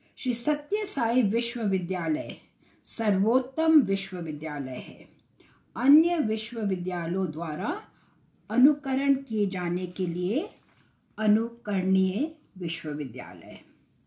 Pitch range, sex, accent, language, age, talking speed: 190-275 Hz, female, Indian, English, 60-79, 75 wpm